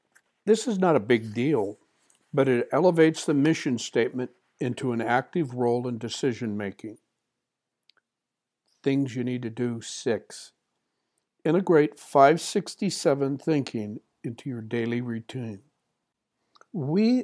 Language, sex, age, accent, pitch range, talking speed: English, male, 60-79, American, 125-165 Hz, 110 wpm